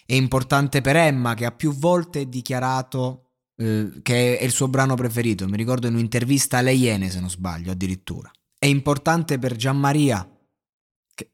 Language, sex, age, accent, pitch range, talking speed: Italian, male, 20-39, native, 110-145 Hz, 170 wpm